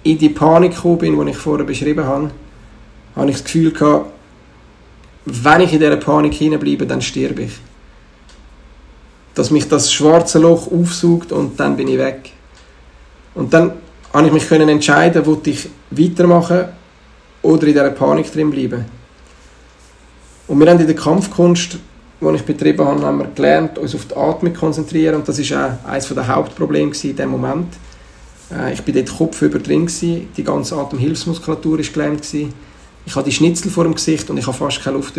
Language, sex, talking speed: German, male, 165 wpm